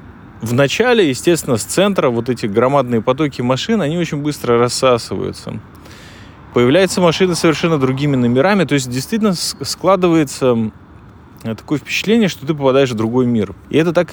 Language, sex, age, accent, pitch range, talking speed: Russian, male, 20-39, native, 110-150 Hz, 145 wpm